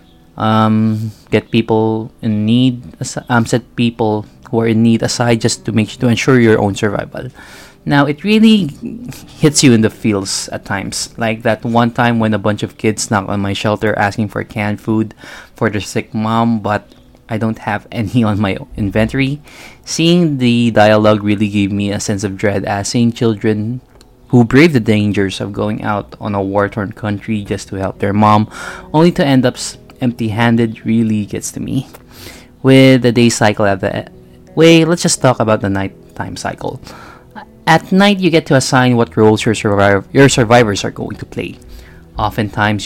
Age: 20-39